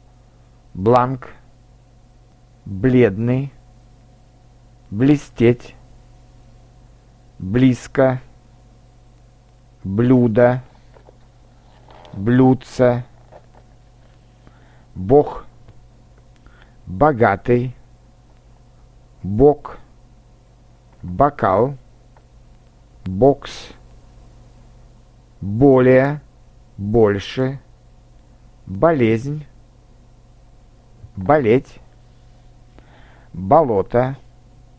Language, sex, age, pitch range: Russian, male, 50-69, 120-125 Hz